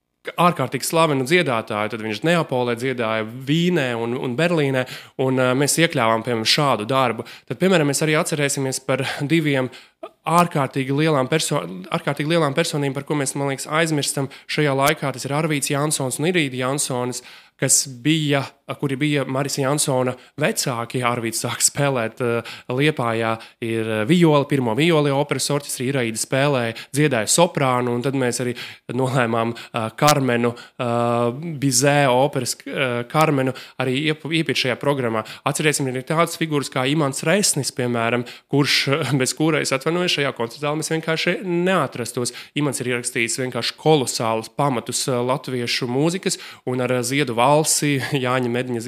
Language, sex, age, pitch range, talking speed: English, male, 20-39, 125-150 Hz, 145 wpm